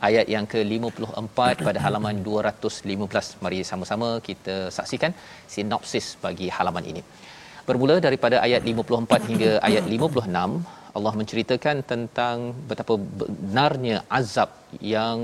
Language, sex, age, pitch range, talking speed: Malayalam, male, 40-59, 105-125 Hz, 110 wpm